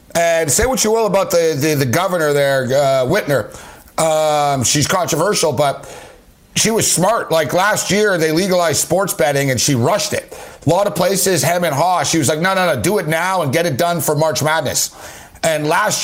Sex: male